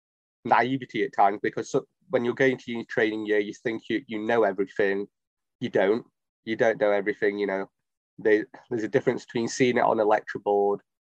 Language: English